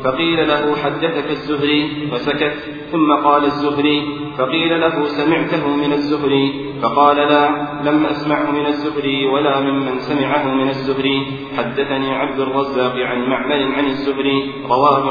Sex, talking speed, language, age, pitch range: male, 125 wpm, Arabic, 40-59, 135-145 Hz